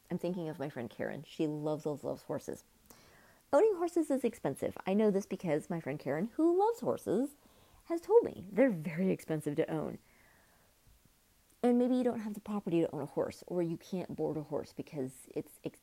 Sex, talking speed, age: female, 200 wpm, 30-49